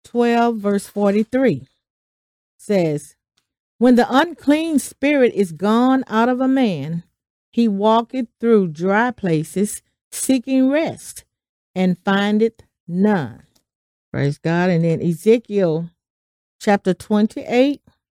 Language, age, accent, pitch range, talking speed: English, 40-59, American, 190-255 Hz, 100 wpm